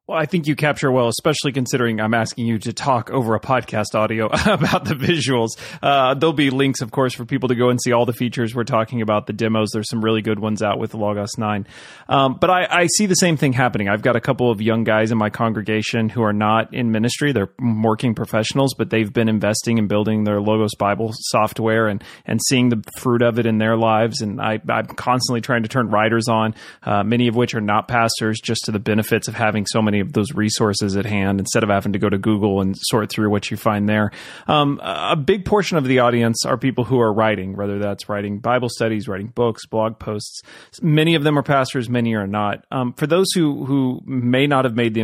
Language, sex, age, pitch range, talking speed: English, male, 30-49, 110-130 Hz, 235 wpm